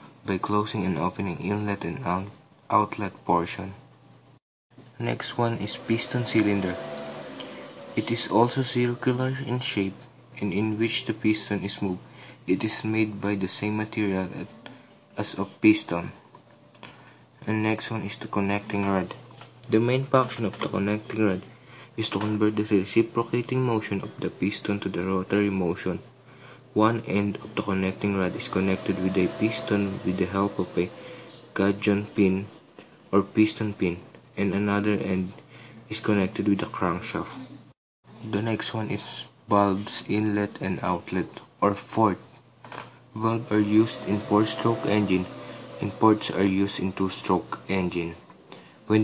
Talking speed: 145 wpm